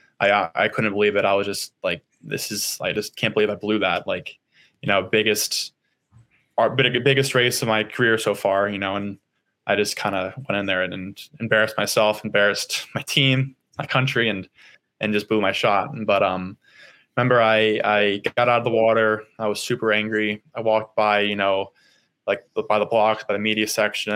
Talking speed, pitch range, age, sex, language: 200 wpm, 100-125 Hz, 20-39, male, English